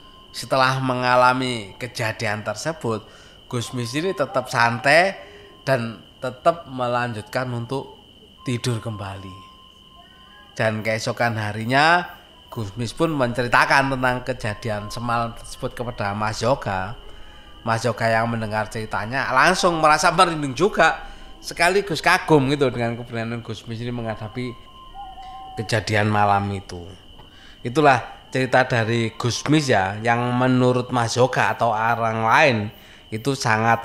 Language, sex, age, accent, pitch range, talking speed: Indonesian, male, 20-39, native, 110-130 Hz, 115 wpm